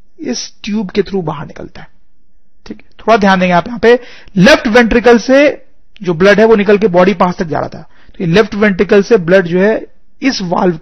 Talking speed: 200 wpm